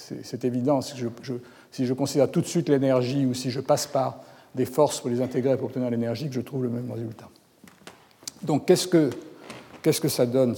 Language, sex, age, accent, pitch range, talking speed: French, male, 60-79, French, 130-165 Hz, 220 wpm